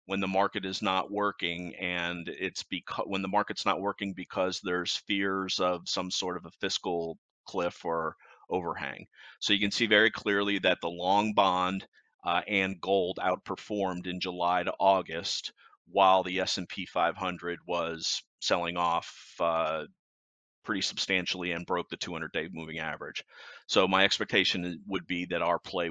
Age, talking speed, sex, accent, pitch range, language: 40-59, 155 wpm, male, American, 85-100 Hz, English